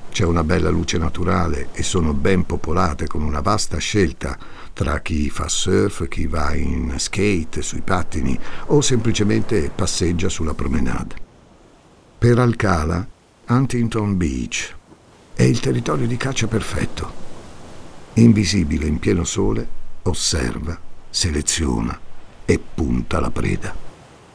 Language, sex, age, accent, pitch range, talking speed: Italian, male, 50-69, native, 80-105 Hz, 120 wpm